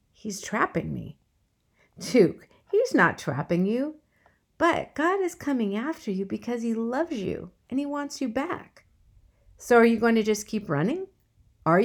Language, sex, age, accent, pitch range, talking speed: English, female, 50-69, American, 195-305 Hz, 160 wpm